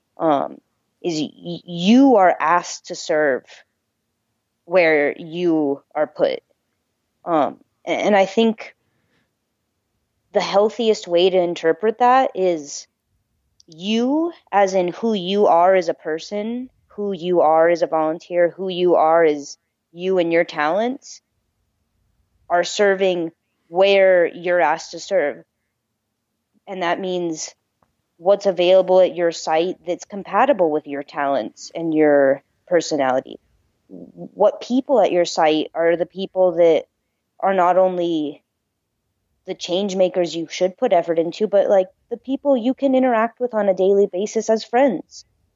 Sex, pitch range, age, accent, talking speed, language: female, 160-210 Hz, 20-39, American, 135 wpm, English